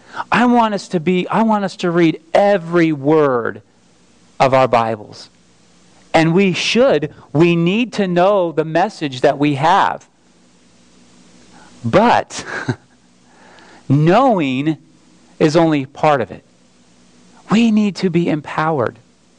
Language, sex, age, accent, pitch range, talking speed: English, male, 40-59, American, 130-195 Hz, 120 wpm